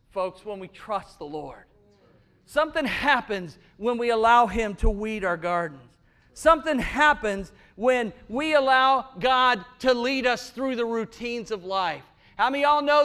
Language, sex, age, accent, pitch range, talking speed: English, male, 40-59, American, 245-315 Hz, 160 wpm